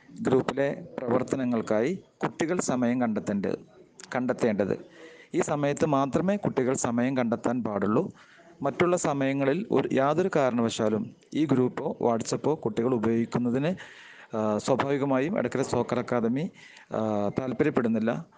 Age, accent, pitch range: 30-49, native, 120-145 Hz